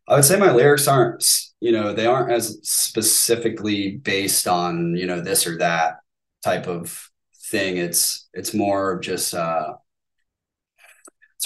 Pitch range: 85-110 Hz